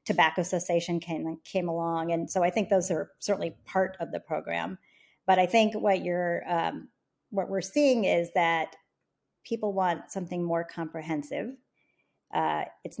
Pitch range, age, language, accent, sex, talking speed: 170-200 Hz, 40-59, English, American, female, 155 wpm